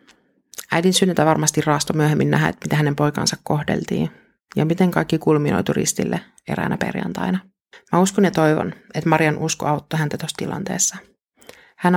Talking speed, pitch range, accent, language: 145 wpm, 155-185 Hz, native, Finnish